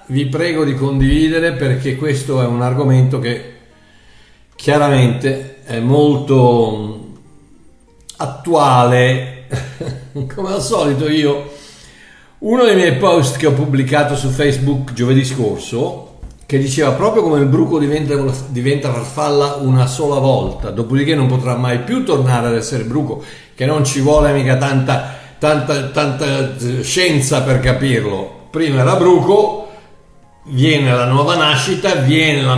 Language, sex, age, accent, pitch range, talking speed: Italian, male, 50-69, native, 135-160 Hz, 130 wpm